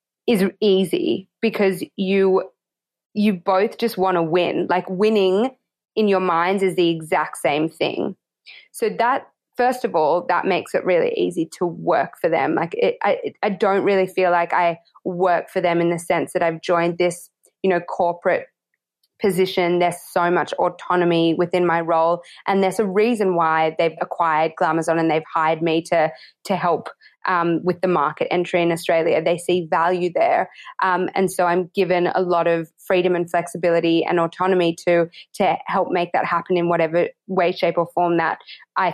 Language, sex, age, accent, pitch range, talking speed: English, female, 20-39, Australian, 175-200 Hz, 180 wpm